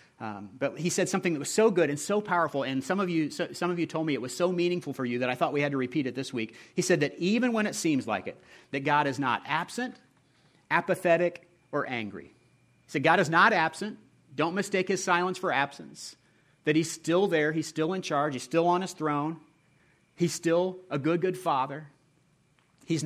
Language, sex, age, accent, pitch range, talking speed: English, male, 40-59, American, 140-175 Hz, 225 wpm